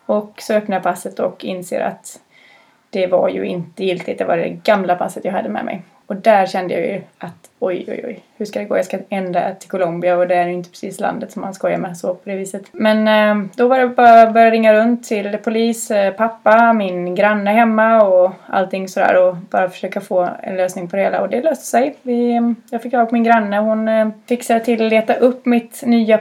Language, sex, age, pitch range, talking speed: Swedish, female, 20-39, 195-230 Hz, 225 wpm